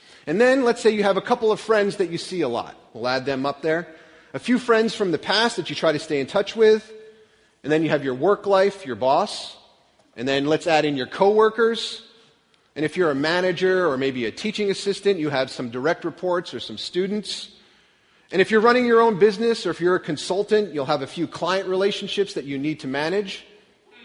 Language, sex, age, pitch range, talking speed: English, male, 30-49, 160-220 Hz, 225 wpm